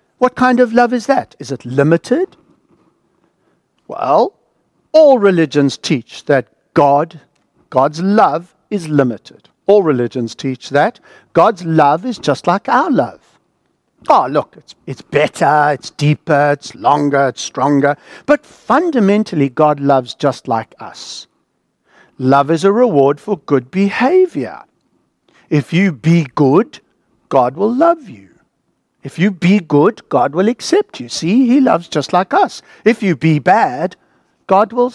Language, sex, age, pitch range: English, male, 60-79, 140-220 Hz